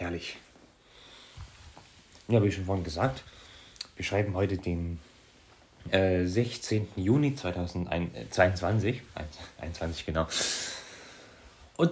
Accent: German